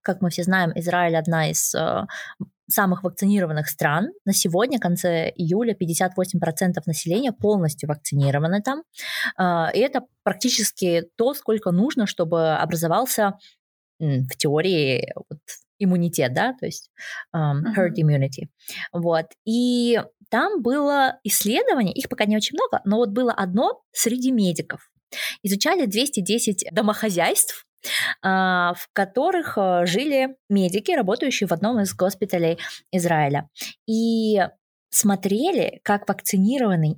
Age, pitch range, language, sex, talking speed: 20-39, 175-225 Hz, Russian, female, 115 wpm